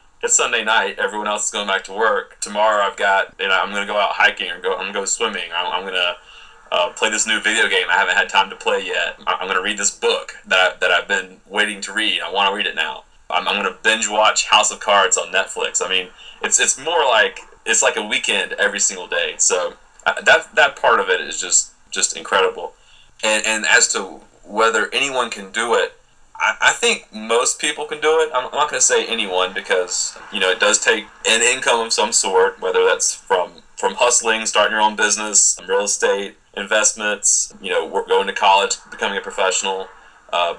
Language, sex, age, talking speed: English, male, 30-49, 230 wpm